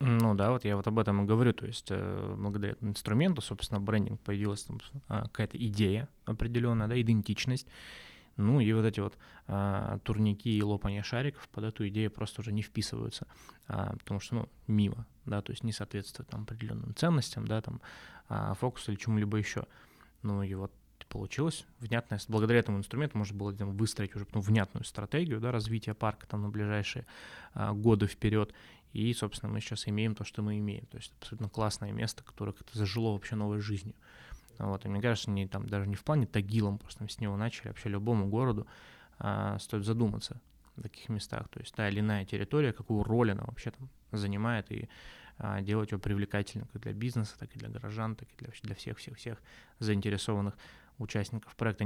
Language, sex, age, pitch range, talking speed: Russian, male, 20-39, 105-115 Hz, 185 wpm